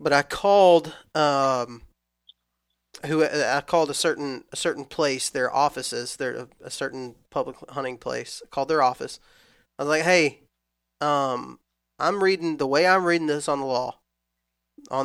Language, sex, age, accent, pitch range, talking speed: English, male, 20-39, American, 125-170 Hz, 160 wpm